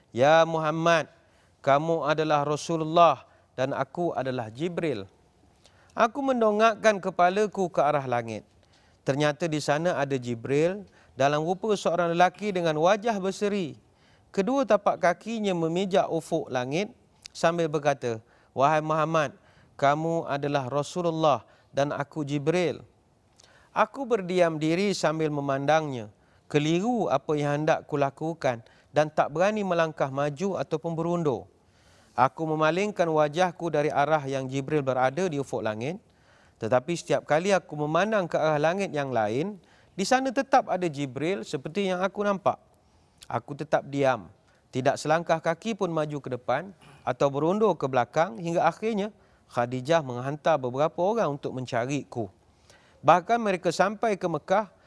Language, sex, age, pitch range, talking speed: Malay, male, 40-59, 135-180 Hz, 130 wpm